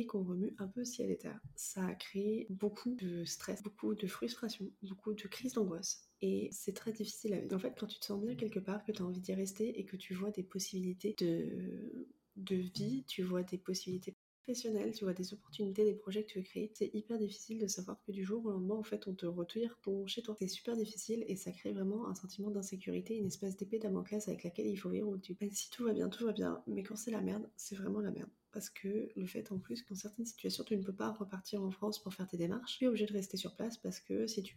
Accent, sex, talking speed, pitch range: French, female, 260 wpm, 185-215 Hz